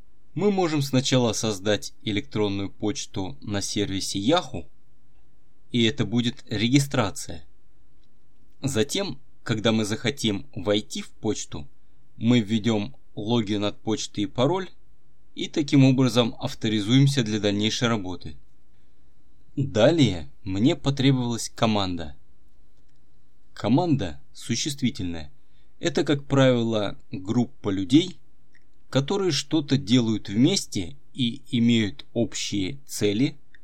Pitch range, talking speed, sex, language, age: 105-135 Hz, 95 wpm, male, Russian, 20-39